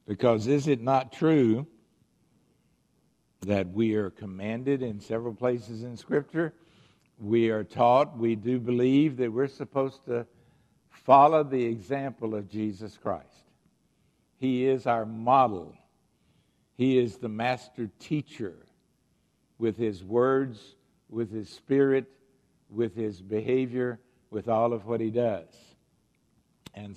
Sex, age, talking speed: male, 60-79, 120 wpm